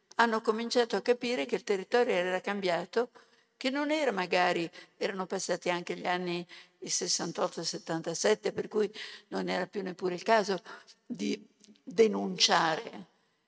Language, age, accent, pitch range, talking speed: Italian, 50-69, native, 185-235 Hz, 135 wpm